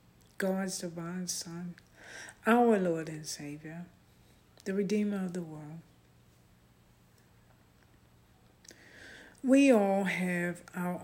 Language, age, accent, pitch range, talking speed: English, 60-79, American, 145-190 Hz, 85 wpm